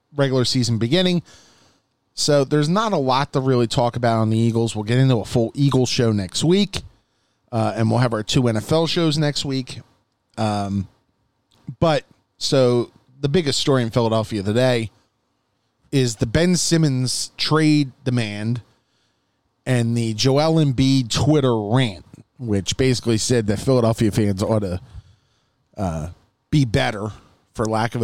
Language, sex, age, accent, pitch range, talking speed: English, male, 30-49, American, 110-145 Hz, 150 wpm